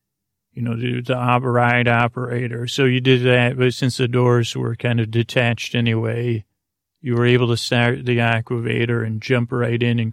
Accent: American